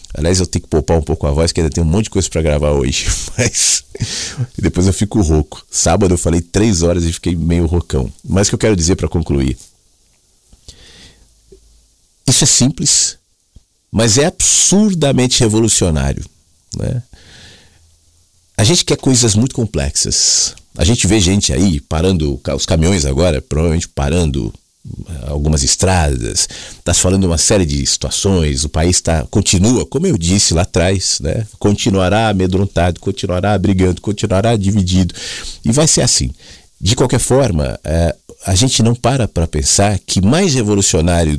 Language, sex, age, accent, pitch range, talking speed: Portuguese, male, 40-59, Brazilian, 80-105 Hz, 155 wpm